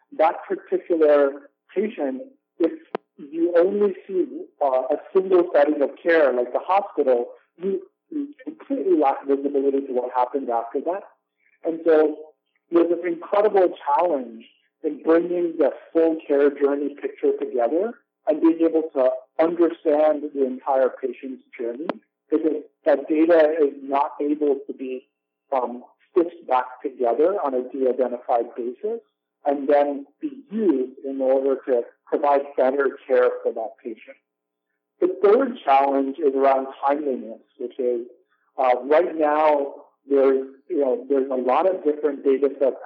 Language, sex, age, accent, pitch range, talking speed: English, male, 50-69, American, 130-195 Hz, 140 wpm